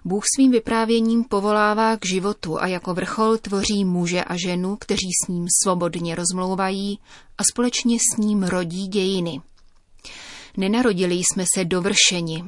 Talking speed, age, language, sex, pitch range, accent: 135 wpm, 30-49, Czech, female, 180-215 Hz, native